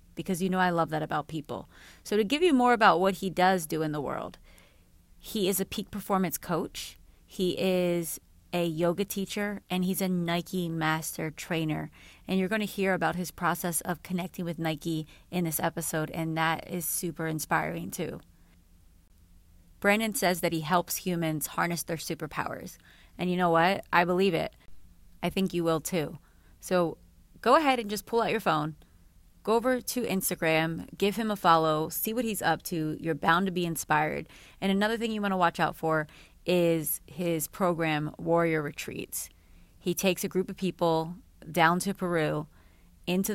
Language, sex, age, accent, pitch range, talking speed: English, female, 30-49, American, 150-185 Hz, 180 wpm